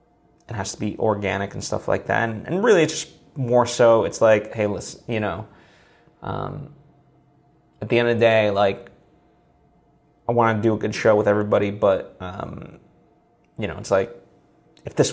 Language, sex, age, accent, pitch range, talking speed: English, male, 20-39, American, 105-125 Hz, 185 wpm